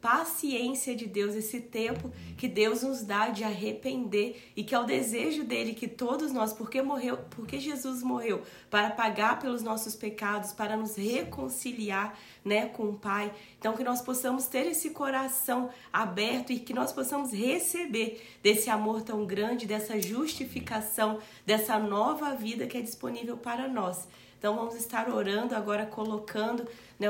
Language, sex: Portuguese, female